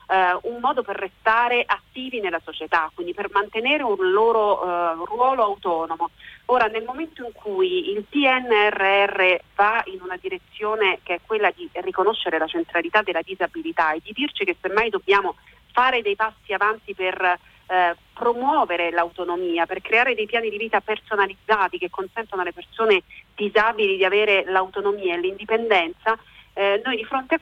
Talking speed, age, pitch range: 160 wpm, 40-59, 180-245 Hz